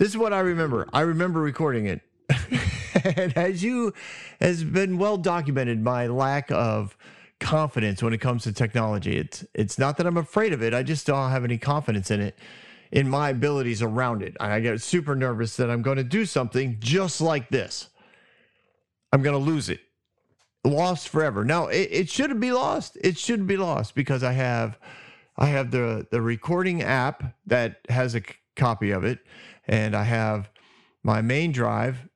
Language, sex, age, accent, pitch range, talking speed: English, male, 40-59, American, 115-155 Hz, 185 wpm